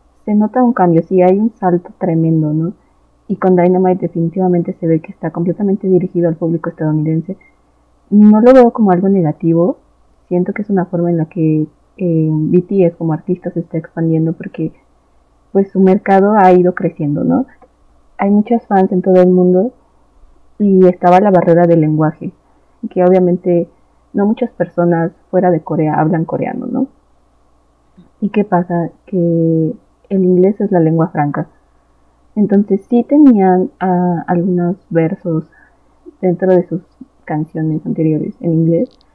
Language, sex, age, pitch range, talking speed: Spanish, female, 30-49, 165-195 Hz, 150 wpm